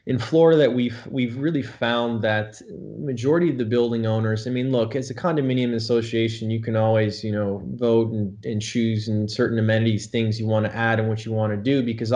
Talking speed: 215 wpm